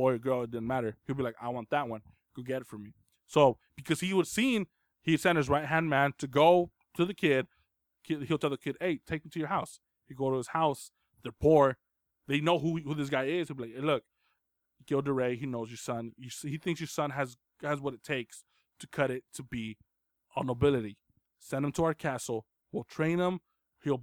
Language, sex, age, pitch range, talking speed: English, male, 20-39, 125-150 Hz, 230 wpm